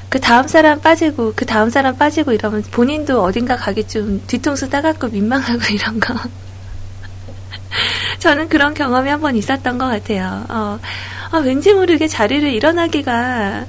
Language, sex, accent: Korean, female, native